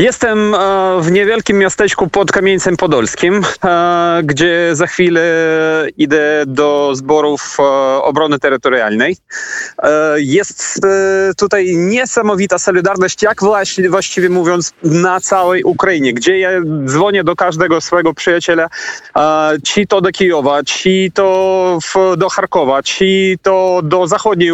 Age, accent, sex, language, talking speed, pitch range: 30-49, native, male, Polish, 110 wpm, 165-195 Hz